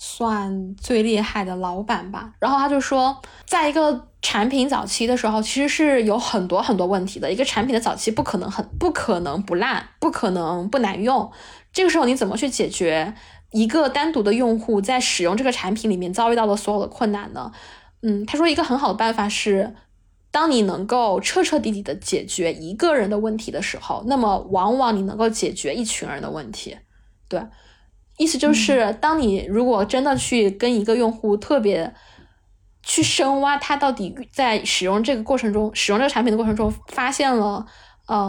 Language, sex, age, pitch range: Chinese, female, 10-29, 205-260 Hz